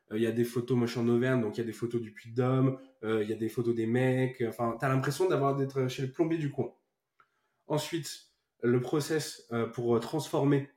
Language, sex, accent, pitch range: French, male, French, 120-150 Hz